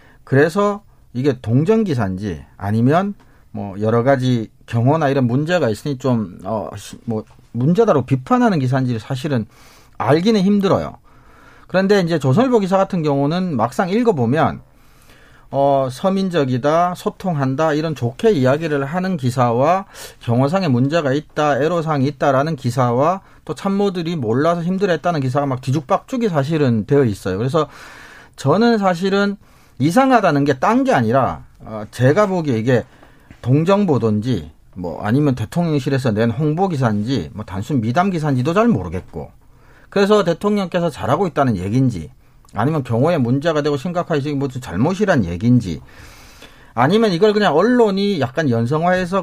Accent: native